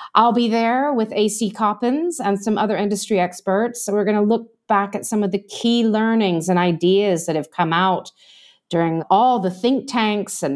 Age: 40-59